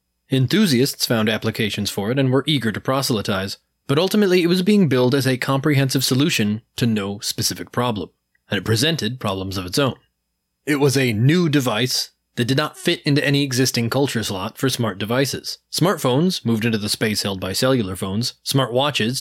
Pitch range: 105-140 Hz